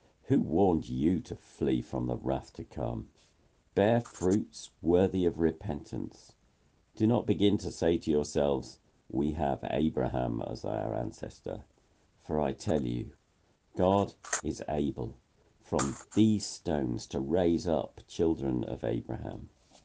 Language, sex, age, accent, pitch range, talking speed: English, male, 50-69, British, 75-100 Hz, 135 wpm